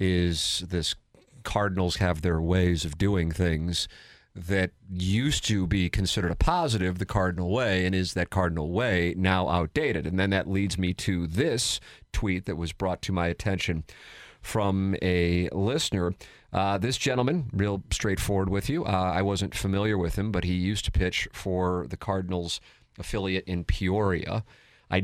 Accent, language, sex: American, English, male